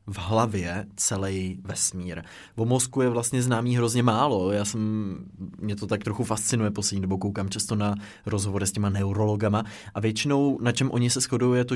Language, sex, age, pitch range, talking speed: Czech, male, 20-39, 105-125 Hz, 185 wpm